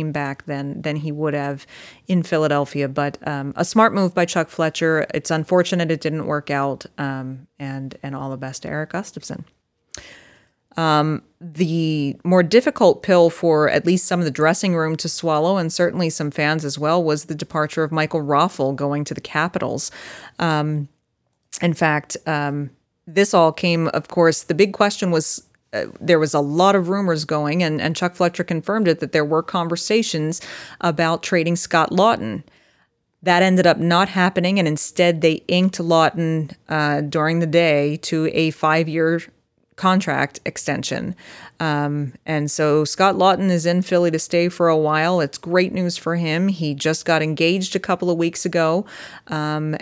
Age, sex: 30-49, female